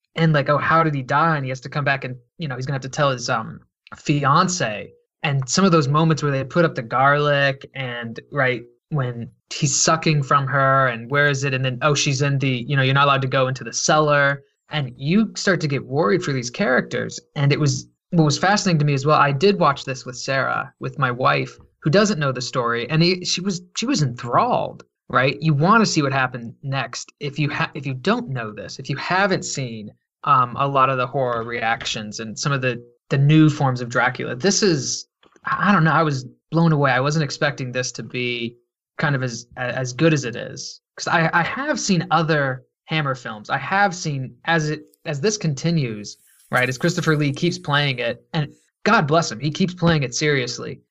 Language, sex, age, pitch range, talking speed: English, male, 20-39, 125-160 Hz, 225 wpm